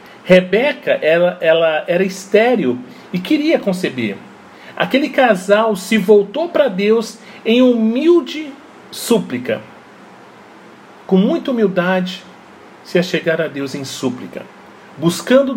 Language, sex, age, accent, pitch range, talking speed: Portuguese, male, 40-59, Brazilian, 170-250 Hz, 105 wpm